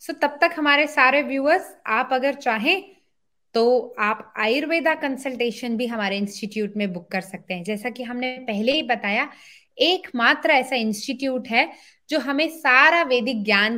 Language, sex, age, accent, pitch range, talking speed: Hindi, female, 20-39, native, 210-290 Hz, 155 wpm